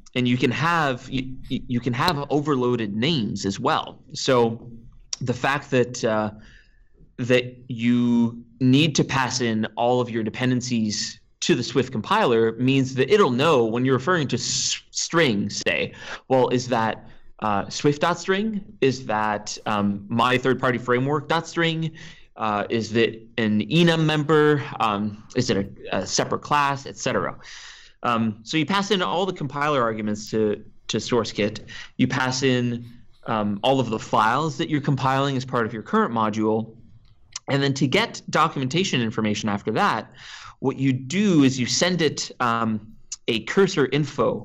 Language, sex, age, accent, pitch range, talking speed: English, male, 30-49, American, 110-140 Hz, 155 wpm